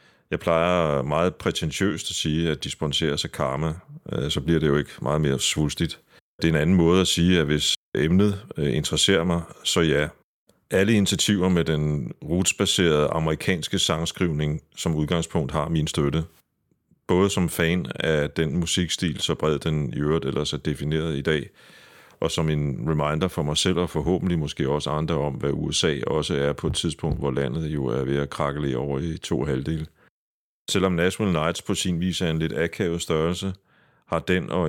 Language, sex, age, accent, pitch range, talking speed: Danish, male, 30-49, native, 75-85 Hz, 180 wpm